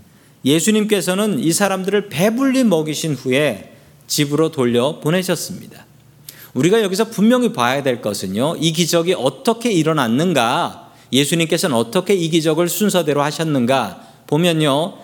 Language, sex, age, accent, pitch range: Korean, male, 40-59, native, 140-200 Hz